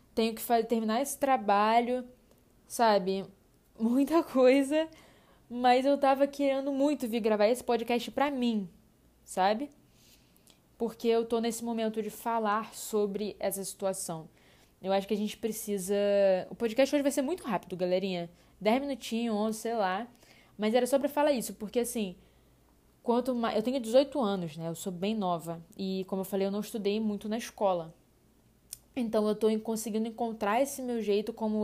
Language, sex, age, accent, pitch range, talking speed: Portuguese, female, 10-29, Brazilian, 200-240 Hz, 165 wpm